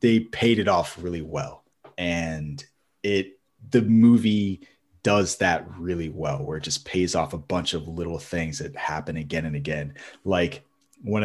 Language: English